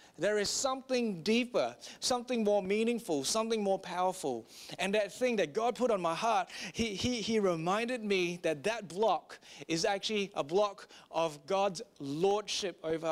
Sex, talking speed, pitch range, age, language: male, 160 wpm, 180-235 Hz, 30-49, English